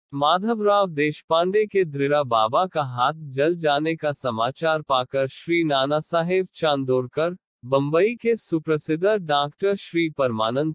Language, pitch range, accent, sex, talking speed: Hindi, 140-190 Hz, native, male, 125 wpm